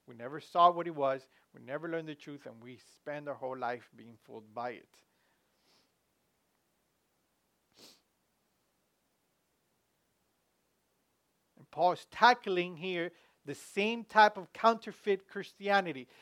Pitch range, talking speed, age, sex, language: 170-225 Hz, 120 wpm, 50-69, male, English